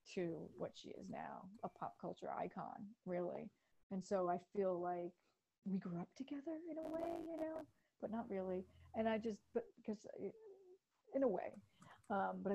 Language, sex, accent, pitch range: English, female, American, 190-235 Hz